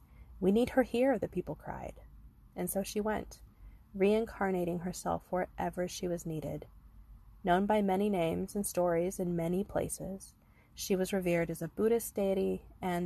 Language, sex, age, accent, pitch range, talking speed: English, female, 20-39, American, 155-190 Hz, 155 wpm